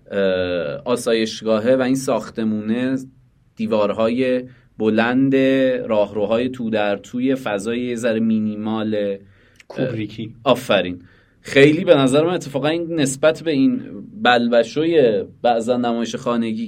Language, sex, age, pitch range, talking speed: Persian, male, 30-49, 110-140 Hz, 105 wpm